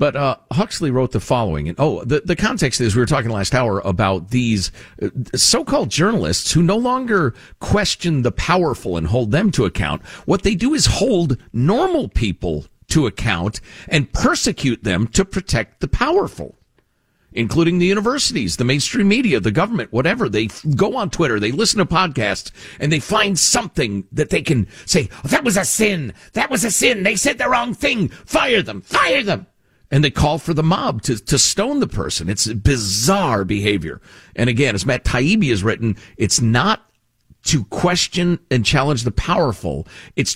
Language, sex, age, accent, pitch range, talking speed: English, male, 50-69, American, 110-175 Hz, 180 wpm